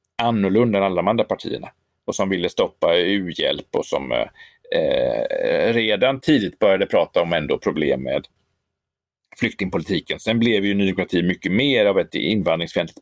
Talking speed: 145 wpm